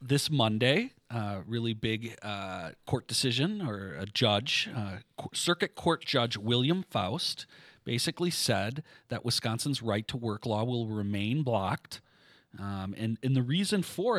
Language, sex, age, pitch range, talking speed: English, male, 40-59, 105-130 Hz, 135 wpm